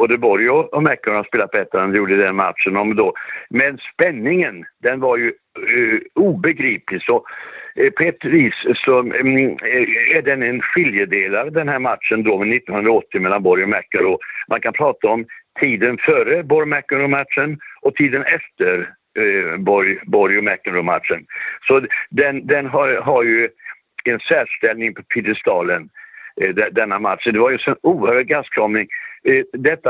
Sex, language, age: male, English, 60-79